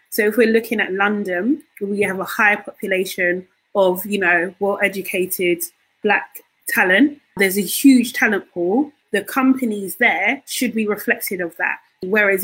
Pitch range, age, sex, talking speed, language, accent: 190-245 Hz, 30-49, female, 150 wpm, English, British